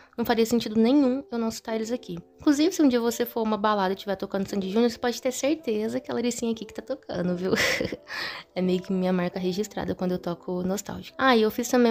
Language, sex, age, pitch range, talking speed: Portuguese, female, 20-39, 190-240 Hz, 250 wpm